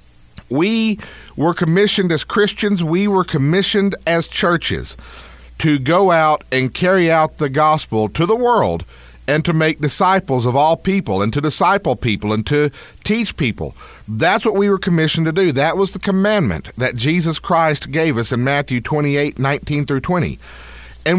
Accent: American